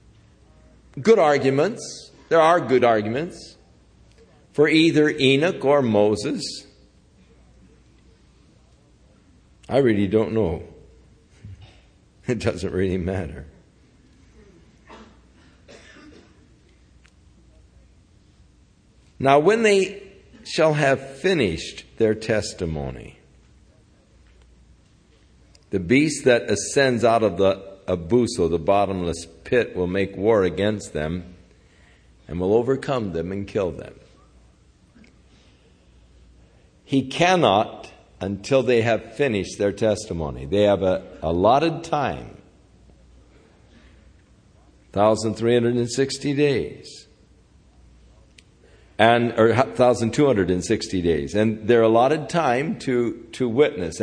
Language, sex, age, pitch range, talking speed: English, male, 60-79, 90-125 Hz, 90 wpm